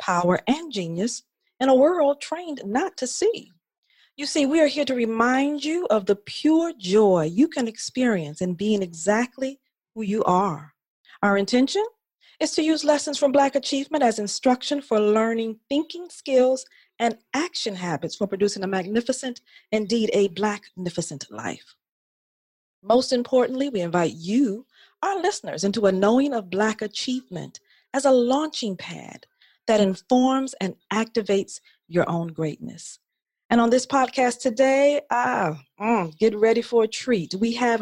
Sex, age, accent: female, 40-59, American